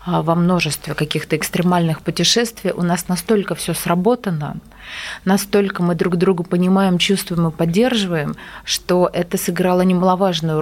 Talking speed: 125 wpm